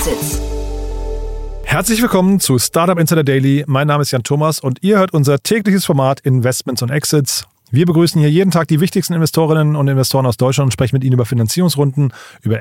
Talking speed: 185 wpm